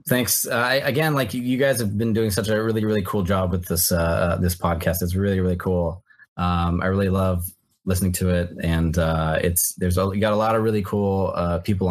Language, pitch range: English, 90-110 Hz